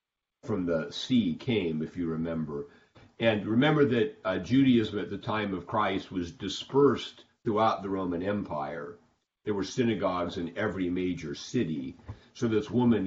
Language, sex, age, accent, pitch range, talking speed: English, male, 50-69, American, 90-115 Hz, 150 wpm